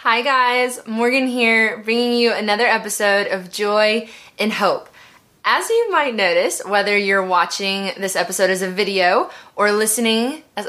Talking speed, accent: 150 wpm, American